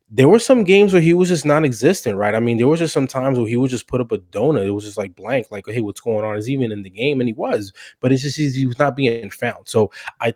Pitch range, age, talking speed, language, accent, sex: 105-130 Hz, 20-39, 315 wpm, English, American, male